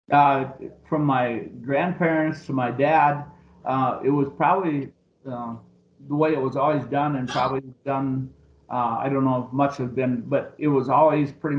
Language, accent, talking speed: English, American, 175 wpm